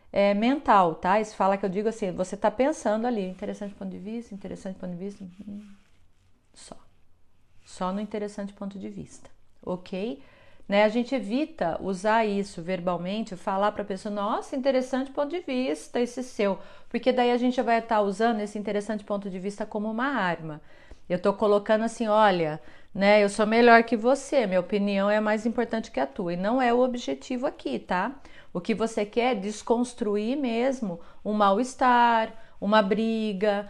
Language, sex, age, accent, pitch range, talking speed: Portuguese, female, 40-59, Brazilian, 200-240 Hz, 175 wpm